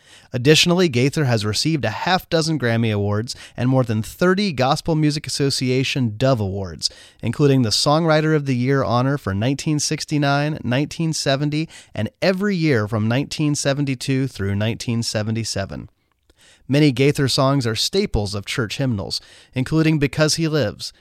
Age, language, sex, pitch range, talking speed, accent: 30-49, English, male, 115-155 Hz, 130 wpm, American